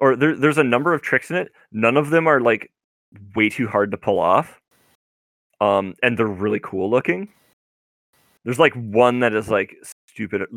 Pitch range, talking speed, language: 100-135 Hz, 180 wpm, English